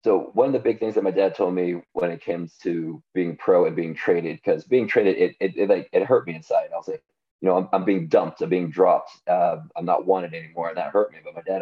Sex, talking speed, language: male, 285 wpm, English